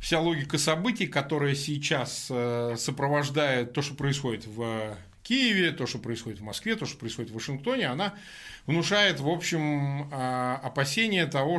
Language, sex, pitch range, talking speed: Russian, male, 135-180 Hz, 140 wpm